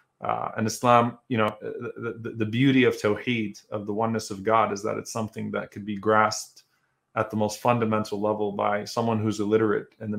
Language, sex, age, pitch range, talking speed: English, male, 20-39, 105-115 Hz, 205 wpm